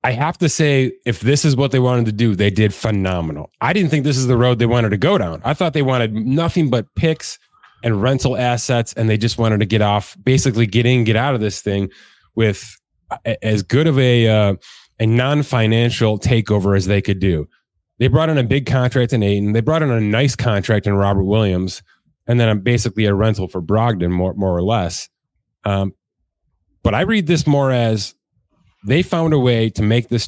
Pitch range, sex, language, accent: 100-130 Hz, male, English, American